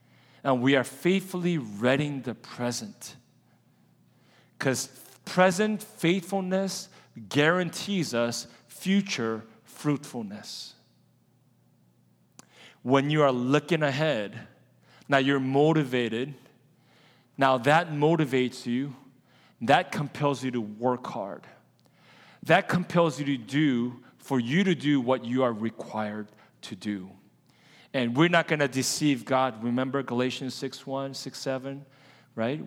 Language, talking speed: English, 110 wpm